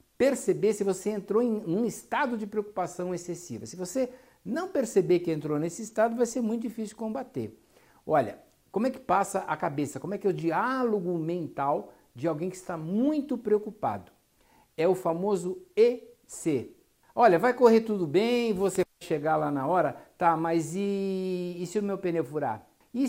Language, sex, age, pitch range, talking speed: Portuguese, male, 60-79, 160-225 Hz, 175 wpm